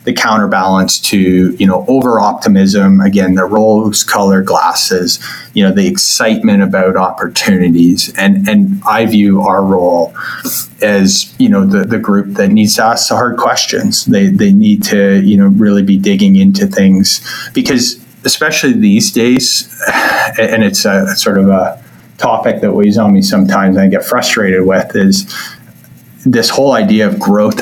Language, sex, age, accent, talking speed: English, male, 30-49, American, 165 wpm